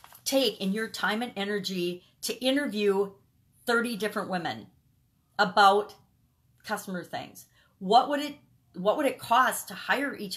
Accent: American